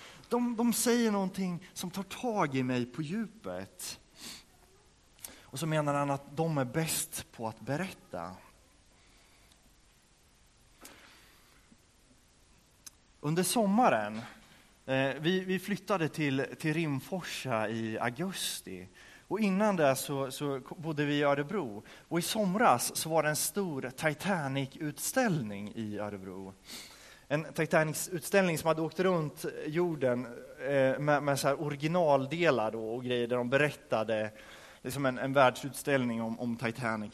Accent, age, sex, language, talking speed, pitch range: native, 30-49, male, Swedish, 125 wpm, 115-170 Hz